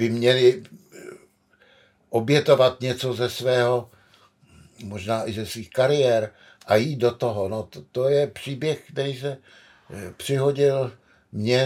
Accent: native